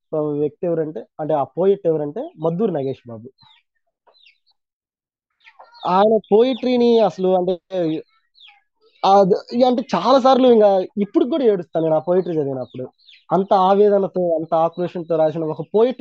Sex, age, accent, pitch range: male, 20-39, native, 150-210 Hz